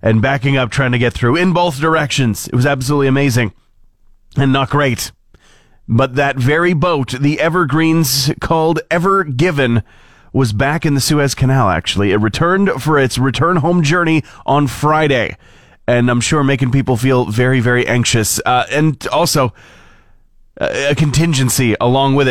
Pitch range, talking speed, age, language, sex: 115-165 Hz, 160 wpm, 30-49, English, male